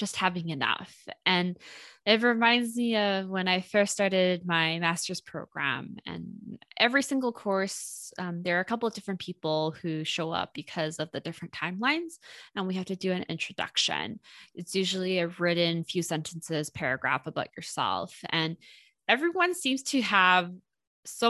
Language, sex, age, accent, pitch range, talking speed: English, female, 20-39, American, 165-205 Hz, 160 wpm